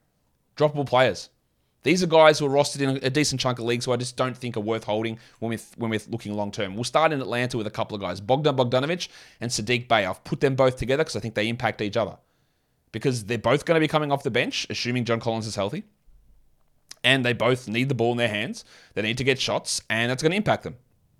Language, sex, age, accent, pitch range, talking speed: English, male, 20-39, Australian, 115-140 Hz, 250 wpm